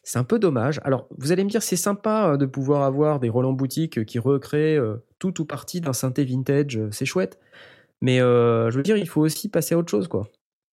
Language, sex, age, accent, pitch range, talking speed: French, male, 20-39, French, 115-155 Hz, 225 wpm